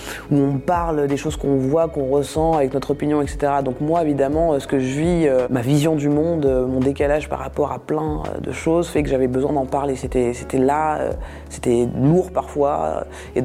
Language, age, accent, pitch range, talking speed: French, 20-39, French, 135-155 Hz, 200 wpm